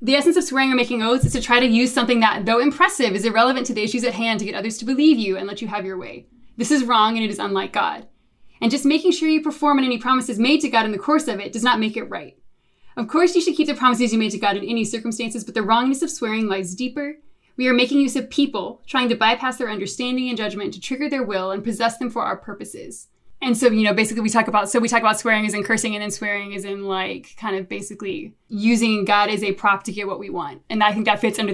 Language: English